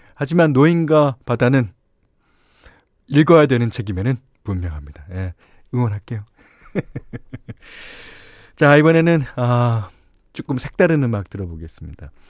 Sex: male